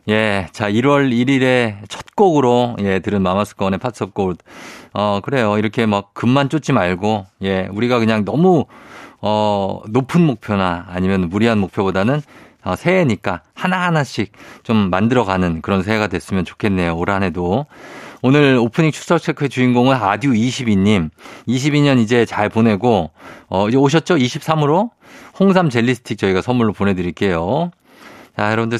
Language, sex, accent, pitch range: Korean, male, native, 100-135 Hz